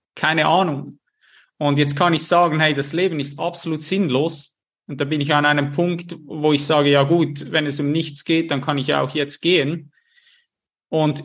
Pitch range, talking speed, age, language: 145-165 Hz, 205 wpm, 30-49, German